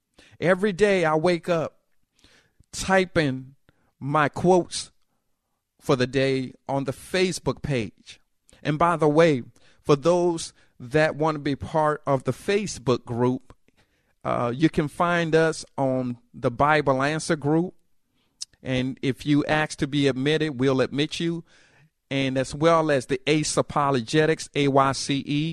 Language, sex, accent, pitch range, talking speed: English, male, American, 130-160 Hz, 135 wpm